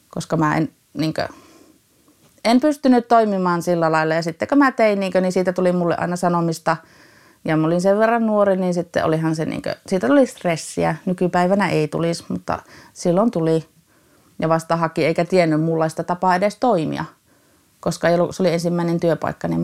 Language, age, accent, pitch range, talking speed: Finnish, 30-49, native, 155-180 Hz, 170 wpm